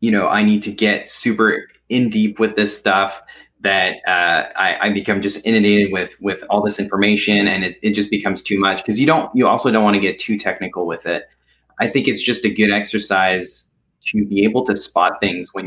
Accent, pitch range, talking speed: American, 100-110 Hz, 220 wpm